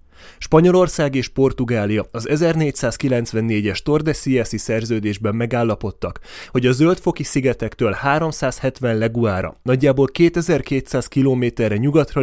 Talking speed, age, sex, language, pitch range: 90 wpm, 30-49, male, Hungarian, 110-145 Hz